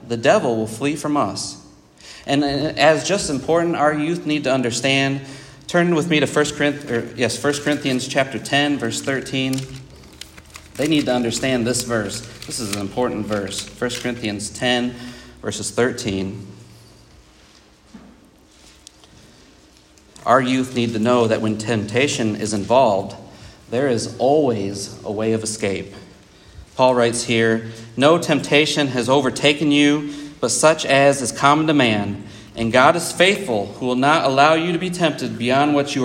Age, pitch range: 40-59, 115-150 Hz